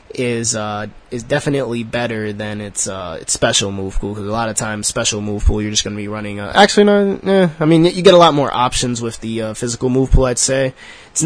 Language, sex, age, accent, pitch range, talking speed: English, male, 20-39, American, 105-140 Hz, 255 wpm